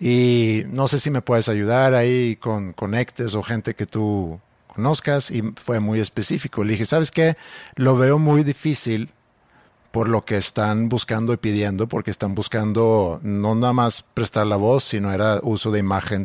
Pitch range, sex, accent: 105-125 Hz, male, Mexican